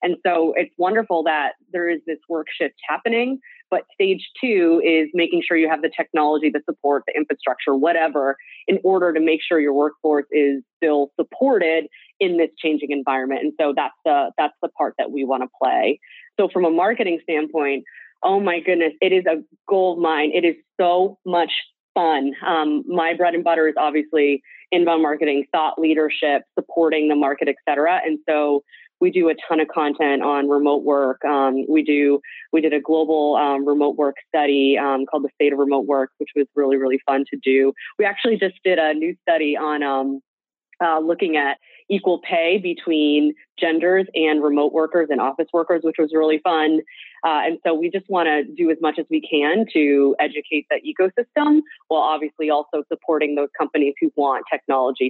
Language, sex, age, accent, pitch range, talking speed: English, female, 20-39, American, 145-175 Hz, 190 wpm